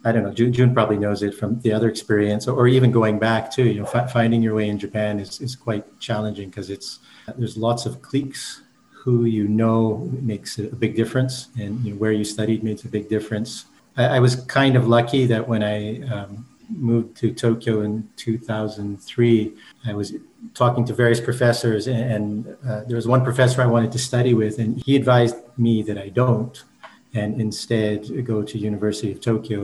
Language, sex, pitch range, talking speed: English, male, 105-120 Hz, 190 wpm